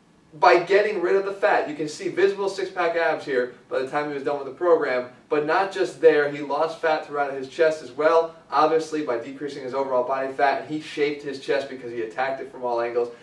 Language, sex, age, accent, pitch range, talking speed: English, male, 20-39, American, 135-165 Hz, 240 wpm